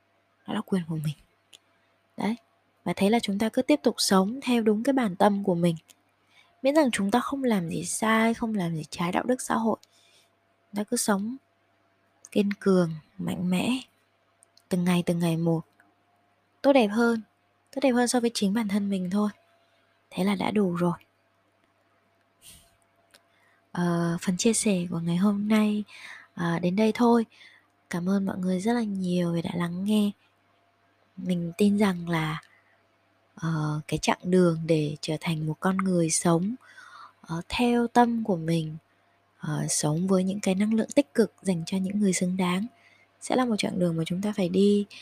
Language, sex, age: Vietnamese, female, 20-39